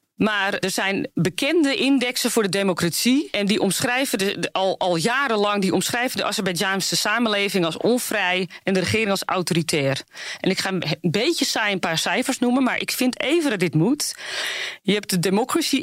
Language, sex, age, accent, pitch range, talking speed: Dutch, female, 40-59, Dutch, 180-245 Hz, 180 wpm